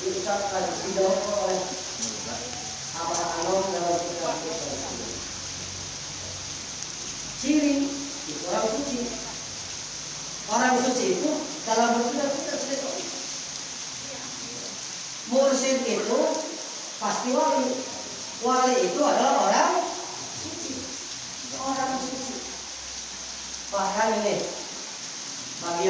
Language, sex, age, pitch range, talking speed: Indonesian, female, 40-59, 185-255 Hz, 65 wpm